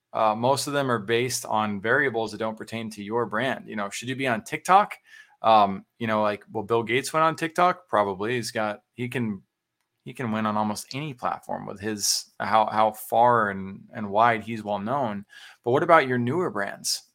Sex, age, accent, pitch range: male, 20-39, American, 110-130 Hz